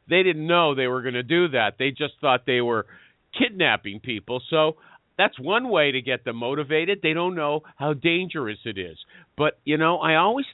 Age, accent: 50-69, American